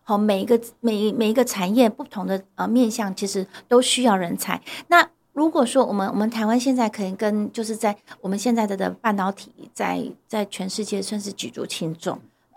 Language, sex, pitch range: Chinese, female, 195-245 Hz